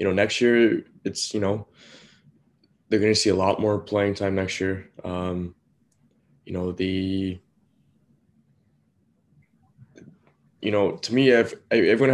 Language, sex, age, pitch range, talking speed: English, male, 20-39, 90-100 Hz, 140 wpm